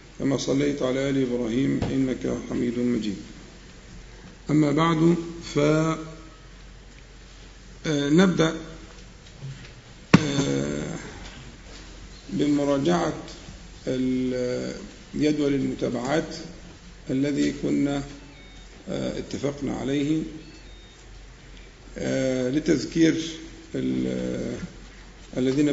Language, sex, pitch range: Arabic, male, 130-160 Hz